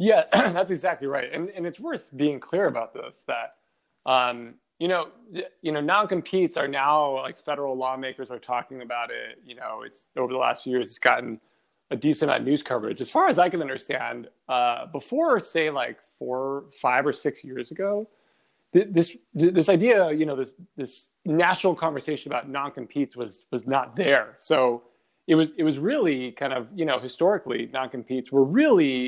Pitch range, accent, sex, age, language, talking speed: 130-165 Hz, American, male, 30-49, English, 190 wpm